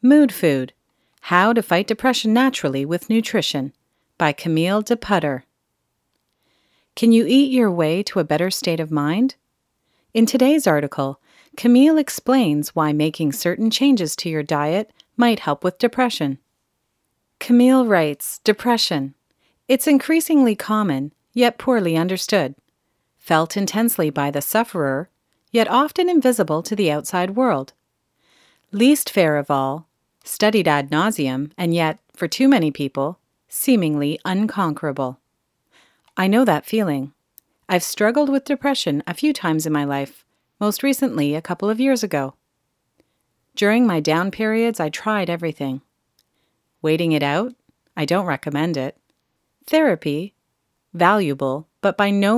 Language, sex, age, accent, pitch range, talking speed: English, female, 40-59, American, 150-230 Hz, 130 wpm